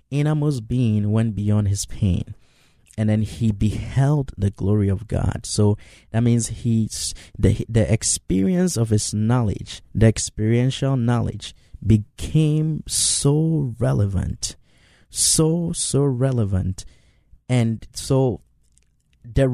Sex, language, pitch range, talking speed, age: male, English, 100-125 Hz, 110 wpm, 20-39